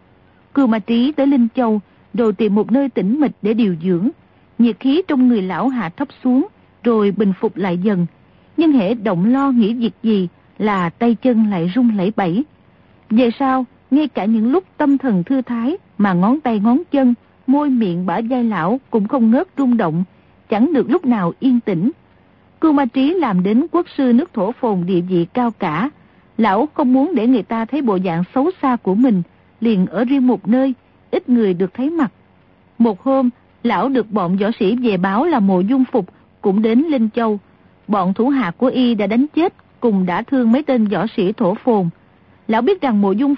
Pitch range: 205-265 Hz